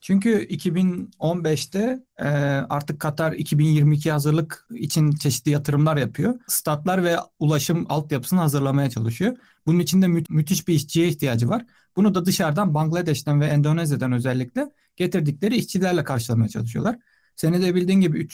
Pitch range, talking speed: 140-170 Hz, 135 wpm